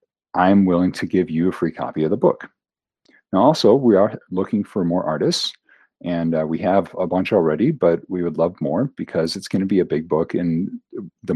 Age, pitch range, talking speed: 40-59, 85-105 Hz, 215 wpm